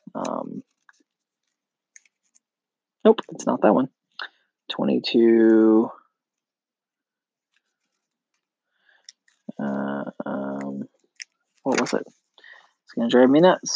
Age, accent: 20-39, American